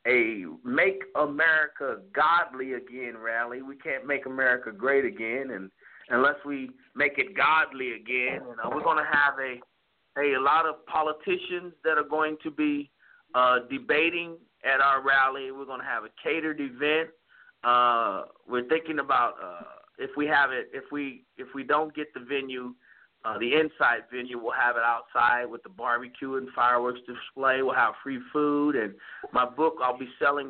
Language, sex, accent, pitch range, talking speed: English, male, American, 125-150 Hz, 170 wpm